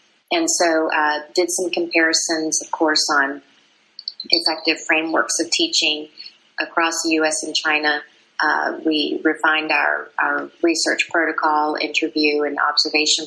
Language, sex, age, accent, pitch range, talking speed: English, female, 30-49, American, 150-170 Hz, 125 wpm